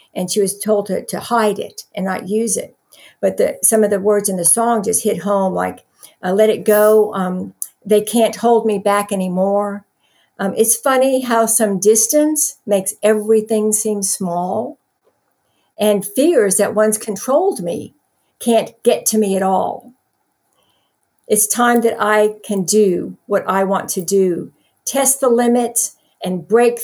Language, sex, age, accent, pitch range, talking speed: English, female, 60-79, American, 195-225 Hz, 165 wpm